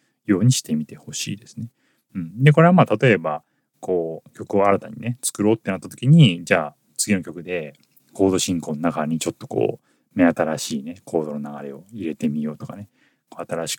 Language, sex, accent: Japanese, male, native